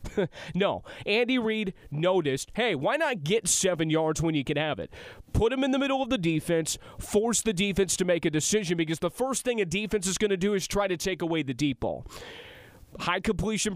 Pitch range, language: 155-210 Hz, English